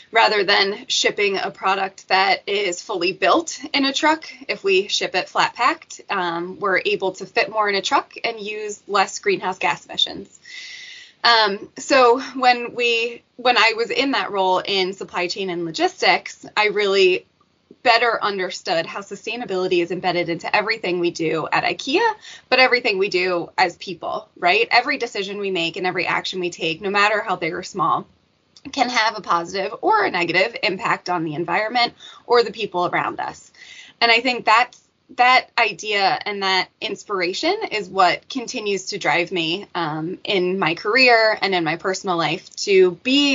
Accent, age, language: American, 20-39, English